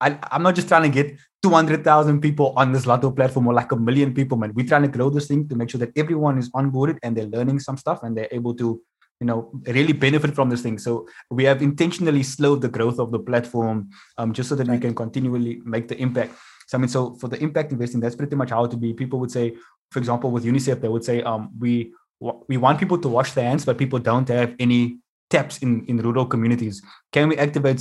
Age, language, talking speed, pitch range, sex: 20-39, English, 245 wpm, 115-140 Hz, male